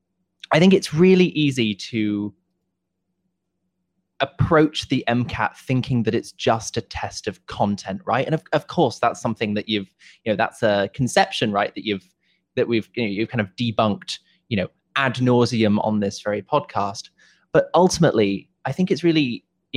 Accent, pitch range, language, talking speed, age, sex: British, 105-150 Hz, English, 175 wpm, 20-39, male